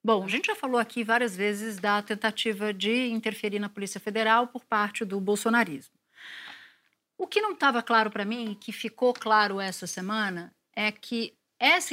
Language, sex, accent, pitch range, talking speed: Portuguese, female, Brazilian, 205-250 Hz, 170 wpm